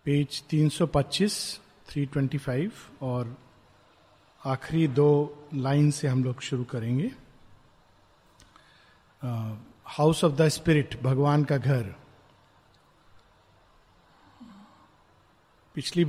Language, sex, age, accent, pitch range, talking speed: Hindi, male, 50-69, native, 145-195 Hz, 75 wpm